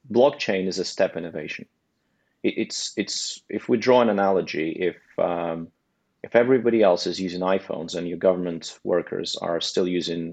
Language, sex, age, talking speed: English, male, 30-49, 155 wpm